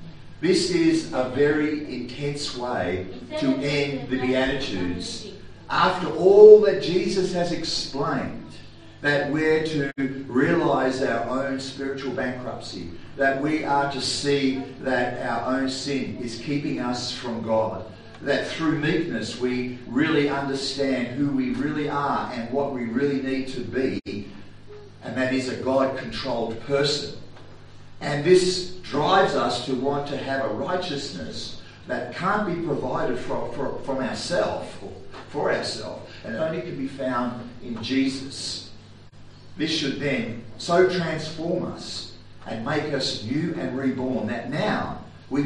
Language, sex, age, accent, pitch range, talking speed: English, male, 50-69, Australian, 115-145 Hz, 135 wpm